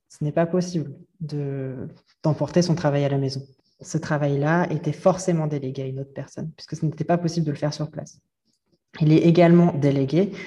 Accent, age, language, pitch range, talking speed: French, 20-39, French, 140-165 Hz, 190 wpm